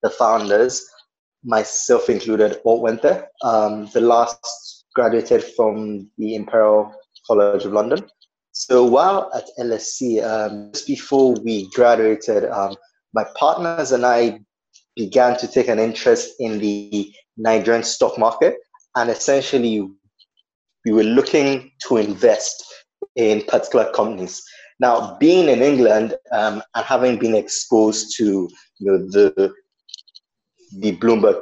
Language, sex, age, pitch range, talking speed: English, male, 20-39, 105-155 Hz, 125 wpm